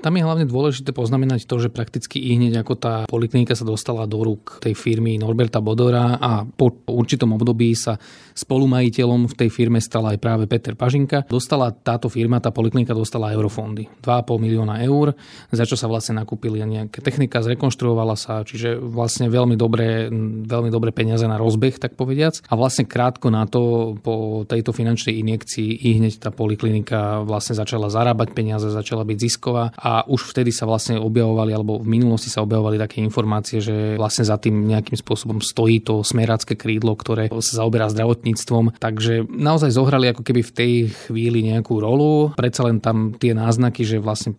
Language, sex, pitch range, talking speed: Slovak, male, 110-120 Hz, 175 wpm